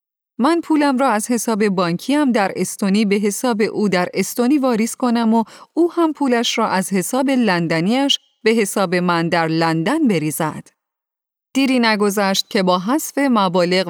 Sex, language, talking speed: female, Persian, 150 wpm